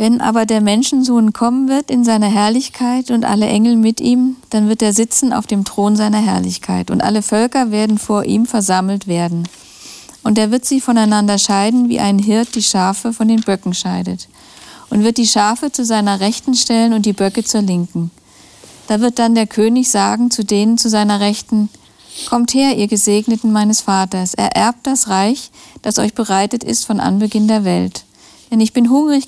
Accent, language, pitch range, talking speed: German, German, 205-240 Hz, 185 wpm